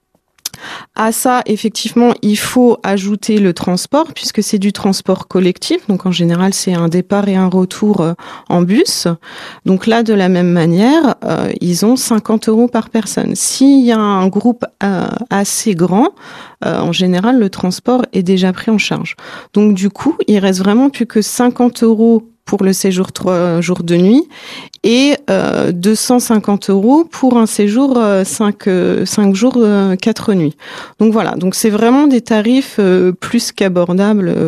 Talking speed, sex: 165 wpm, female